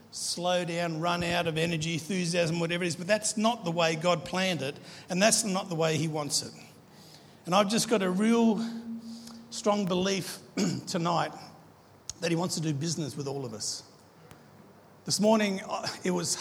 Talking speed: 180 wpm